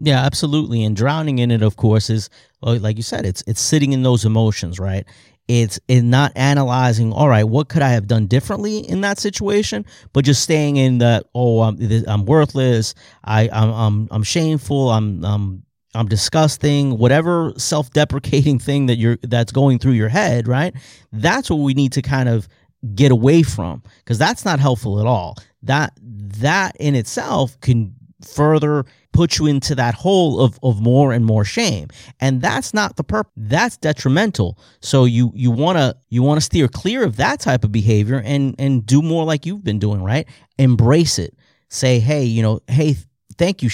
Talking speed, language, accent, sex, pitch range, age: 185 wpm, English, American, male, 110-145 Hz, 40-59